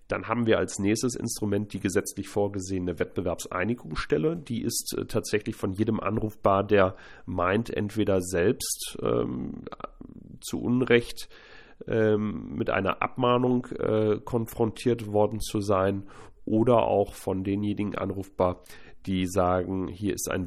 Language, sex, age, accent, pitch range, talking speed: German, male, 40-59, German, 95-110 Hz, 125 wpm